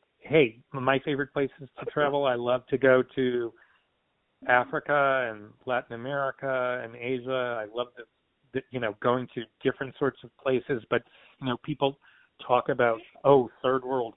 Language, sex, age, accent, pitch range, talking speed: English, male, 40-59, American, 115-135 Hz, 155 wpm